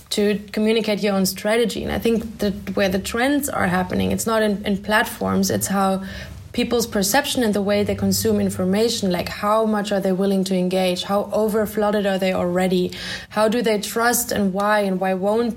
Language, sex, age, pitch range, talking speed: English, female, 20-39, 195-225 Hz, 200 wpm